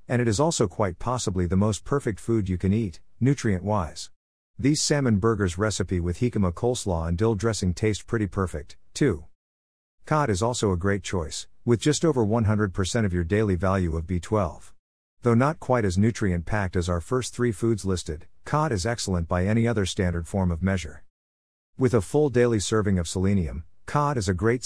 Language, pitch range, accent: English, 90-115 Hz, American